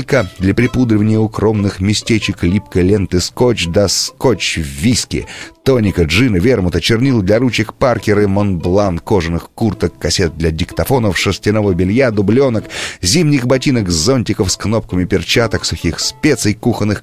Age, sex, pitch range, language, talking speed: 30-49, male, 95-120 Hz, Russian, 130 wpm